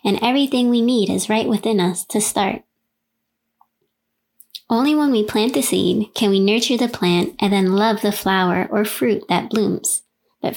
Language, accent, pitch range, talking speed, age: English, American, 195-230 Hz, 175 wpm, 20-39